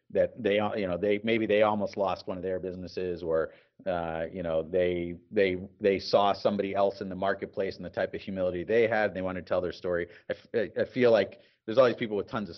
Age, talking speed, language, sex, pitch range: 40-59, 245 wpm, English, male, 90-105 Hz